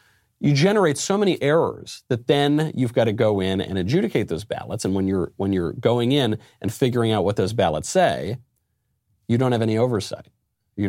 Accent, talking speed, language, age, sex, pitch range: American, 200 wpm, English, 40-59, male, 95-125 Hz